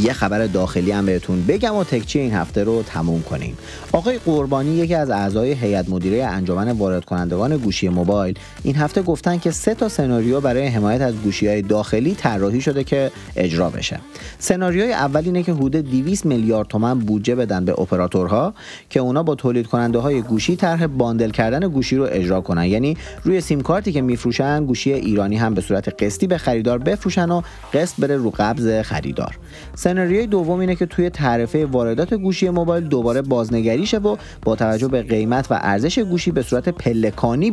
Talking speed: 180 wpm